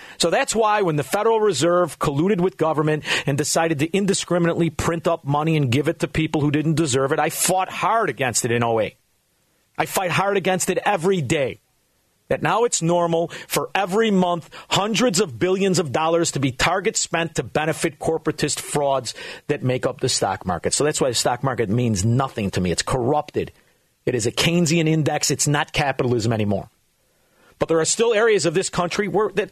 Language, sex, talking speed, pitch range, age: English, male, 195 wpm, 150-200 Hz, 40-59